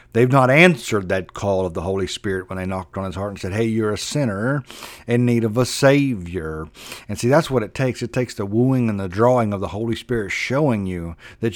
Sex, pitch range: male, 100-130 Hz